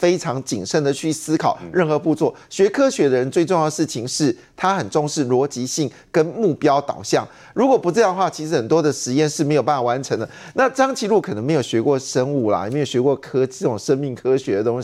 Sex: male